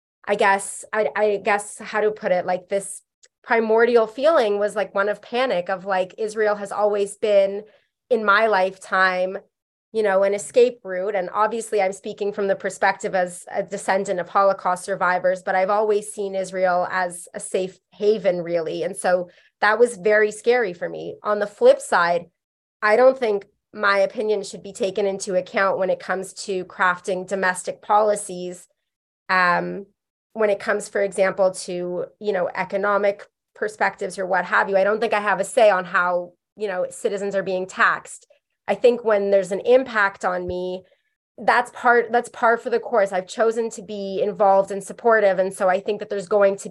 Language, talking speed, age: English, 185 wpm, 20-39